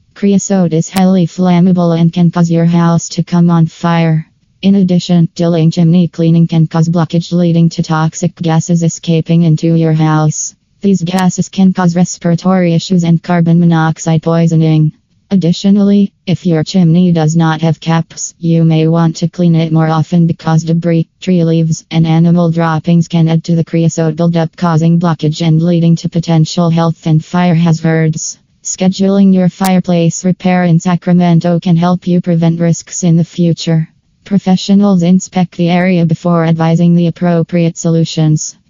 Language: English